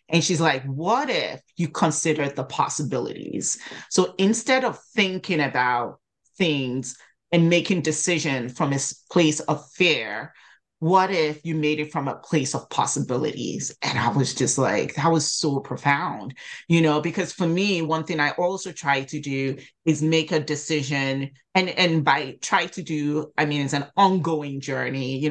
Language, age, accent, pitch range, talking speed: English, 30-49, American, 140-170 Hz, 170 wpm